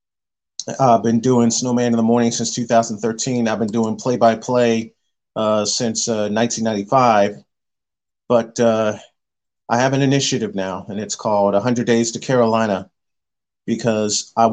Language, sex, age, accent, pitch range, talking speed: English, male, 40-59, American, 105-120 Hz, 135 wpm